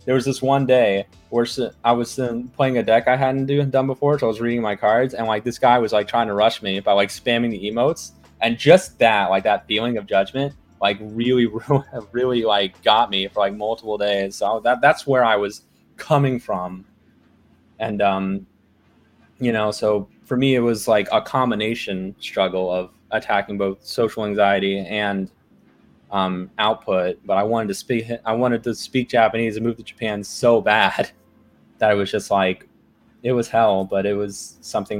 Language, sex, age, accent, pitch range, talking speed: English, male, 20-39, American, 100-120 Hz, 195 wpm